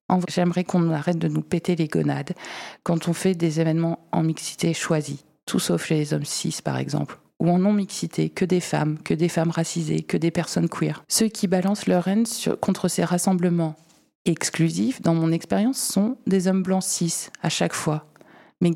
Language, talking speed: French, 190 wpm